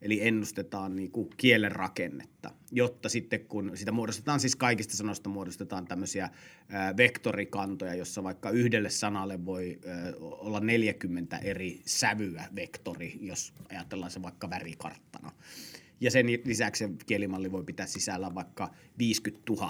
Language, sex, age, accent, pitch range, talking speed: Finnish, male, 30-49, native, 95-120 Hz, 120 wpm